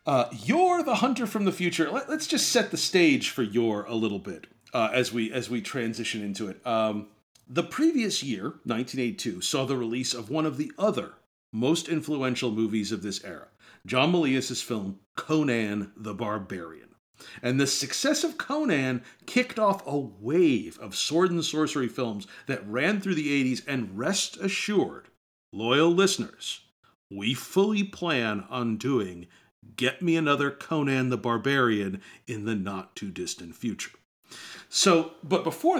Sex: male